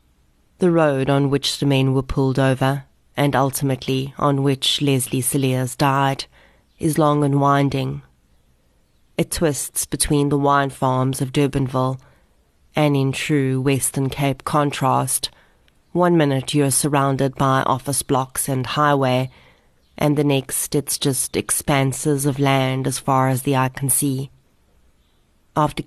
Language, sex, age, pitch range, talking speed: English, female, 30-49, 130-145 Hz, 140 wpm